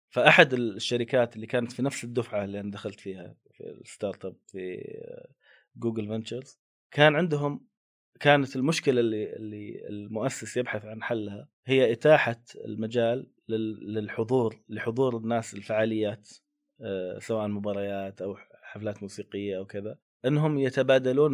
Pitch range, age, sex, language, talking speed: 105-130 Hz, 30-49, male, Arabic, 120 wpm